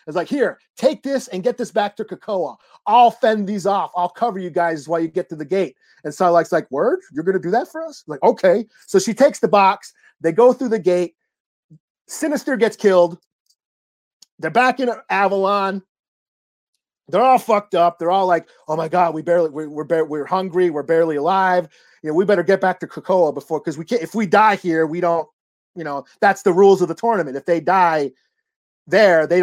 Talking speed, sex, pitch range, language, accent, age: 215 wpm, male, 165-215 Hz, English, American, 30-49